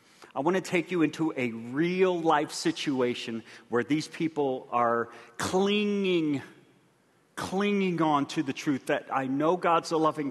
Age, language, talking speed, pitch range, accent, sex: 40-59, English, 145 wpm, 145-180 Hz, American, male